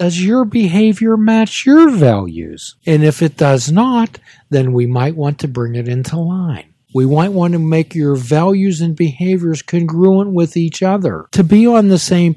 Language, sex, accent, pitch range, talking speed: English, male, American, 130-175 Hz, 185 wpm